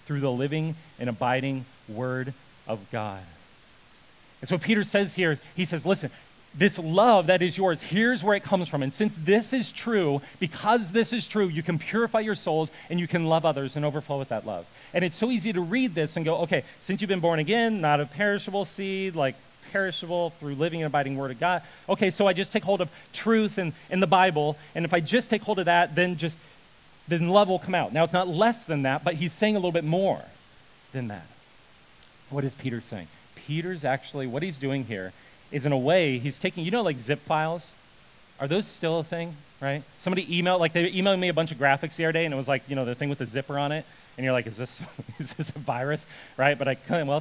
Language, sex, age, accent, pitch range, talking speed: English, male, 40-59, American, 140-185 Hz, 235 wpm